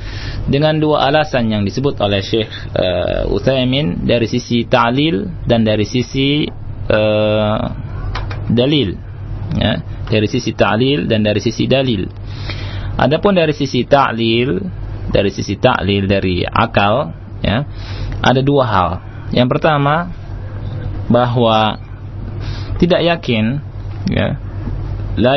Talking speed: 105 wpm